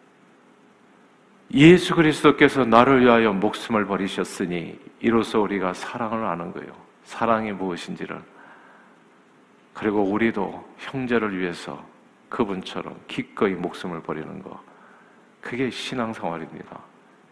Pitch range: 105-140 Hz